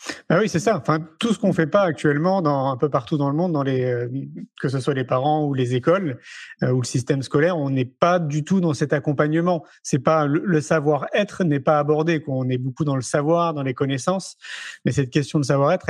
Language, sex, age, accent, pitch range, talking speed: French, male, 30-49, French, 145-180 Hz, 245 wpm